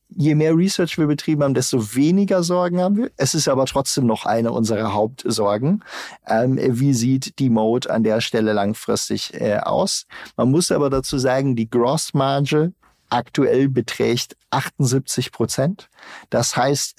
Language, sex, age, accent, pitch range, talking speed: German, male, 50-69, German, 115-140 Hz, 155 wpm